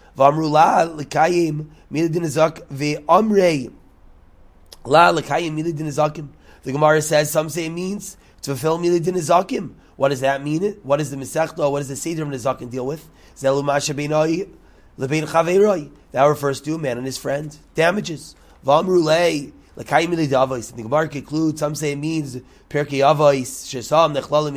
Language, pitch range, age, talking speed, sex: English, 135-170 Hz, 30-49, 145 wpm, male